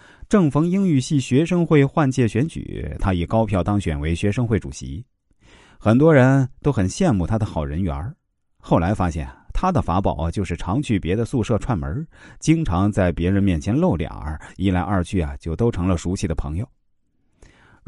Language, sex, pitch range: Chinese, male, 85-125 Hz